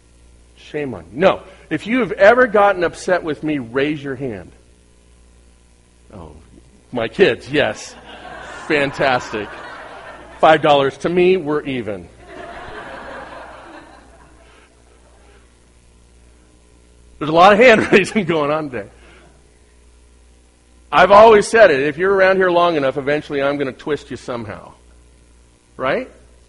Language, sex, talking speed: English, male, 120 wpm